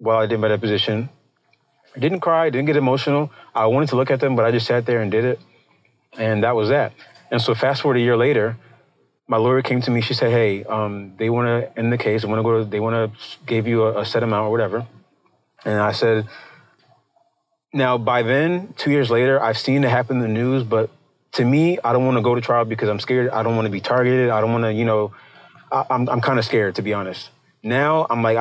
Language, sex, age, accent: English, male, 30-49, American